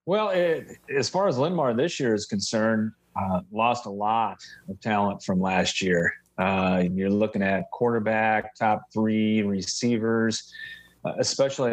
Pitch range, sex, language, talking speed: 100-115 Hz, male, English, 150 wpm